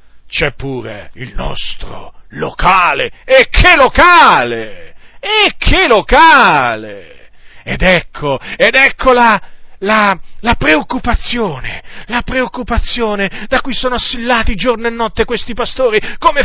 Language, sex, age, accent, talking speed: Italian, male, 40-59, native, 115 wpm